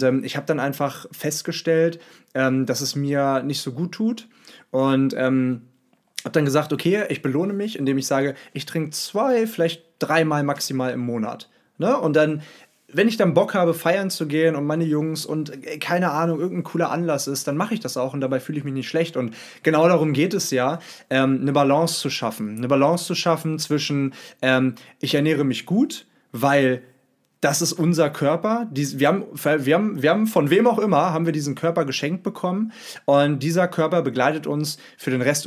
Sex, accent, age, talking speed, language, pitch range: male, German, 20-39, 190 wpm, German, 135-165 Hz